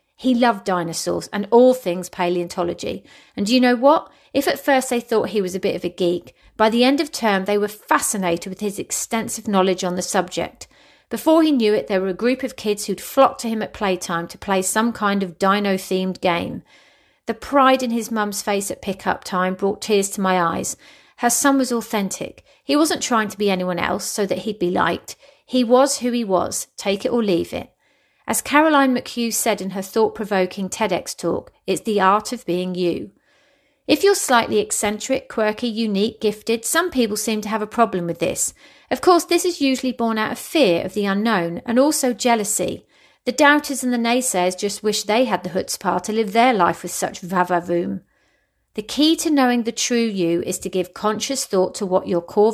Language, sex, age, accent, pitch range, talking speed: English, female, 40-59, British, 185-245 Hz, 210 wpm